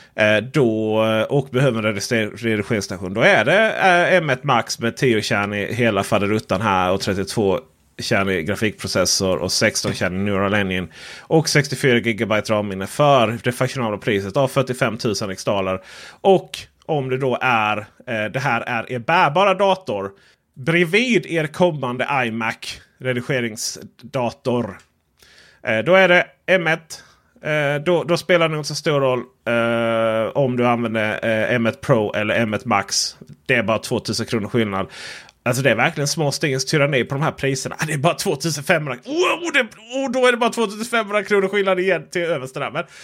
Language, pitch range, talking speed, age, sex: Swedish, 110-165 Hz, 160 wpm, 30-49, male